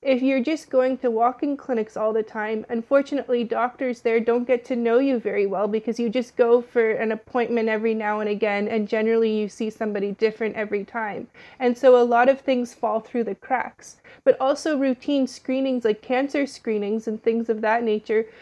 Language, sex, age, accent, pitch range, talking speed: English, female, 30-49, American, 220-250 Hz, 200 wpm